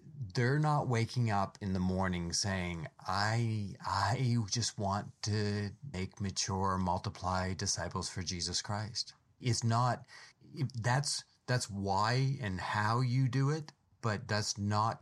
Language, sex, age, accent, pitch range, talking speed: English, male, 30-49, American, 95-115 Hz, 130 wpm